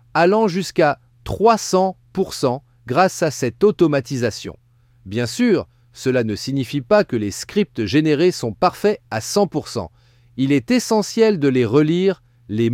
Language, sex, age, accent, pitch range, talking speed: French, male, 40-59, French, 120-190 Hz, 130 wpm